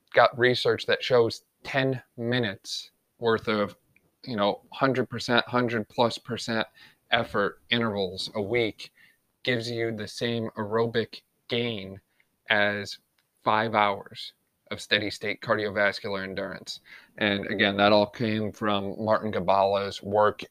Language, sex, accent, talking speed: English, male, American, 120 wpm